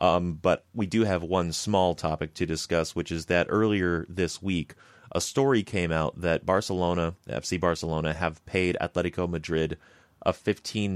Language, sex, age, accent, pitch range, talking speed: English, male, 30-49, American, 80-95 Hz, 165 wpm